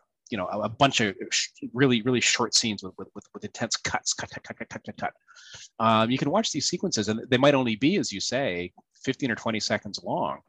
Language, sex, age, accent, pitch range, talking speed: English, male, 30-49, American, 95-120 Hz, 245 wpm